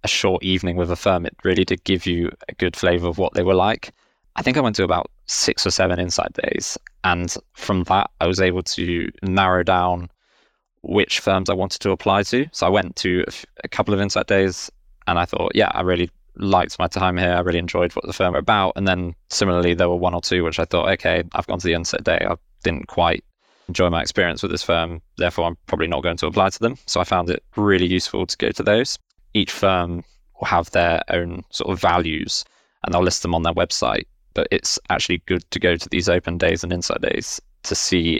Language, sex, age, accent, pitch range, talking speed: English, male, 20-39, British, 85-95 Hz, 240 wpm